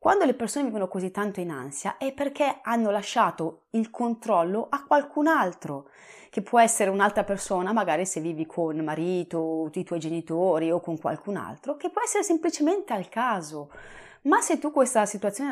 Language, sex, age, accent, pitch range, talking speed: Italian, female, 30-49, native, 180-280 Hz, 180 wpm